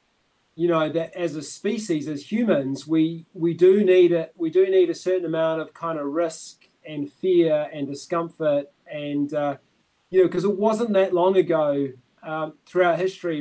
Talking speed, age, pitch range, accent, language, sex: 180 wpm, 30-49, 155-190 Hz, Australian, English, male